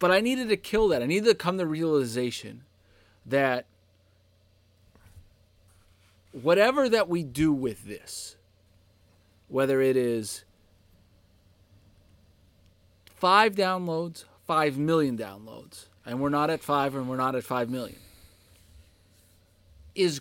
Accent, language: American, English